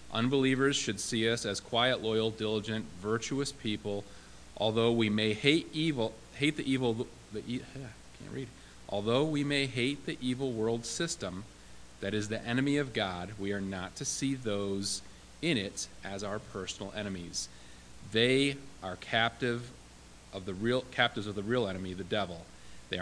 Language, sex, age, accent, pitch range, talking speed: English, male, 40-59, American, 90-140 Hz, 160 wpm